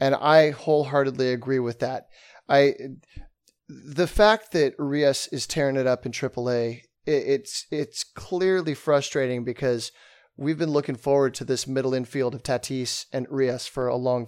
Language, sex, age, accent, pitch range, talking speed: English, male, 30-49, American, 130-155 Hz, 160 wpm